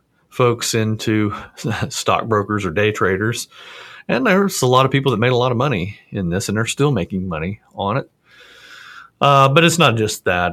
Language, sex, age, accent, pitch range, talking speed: English, male, 40-59, American, 100-120 Hz, 190 wpm